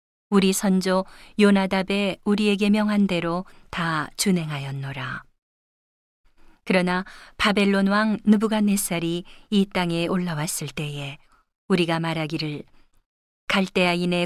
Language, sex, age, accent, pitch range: Korean, female, 40-59, native, 170-200 Hz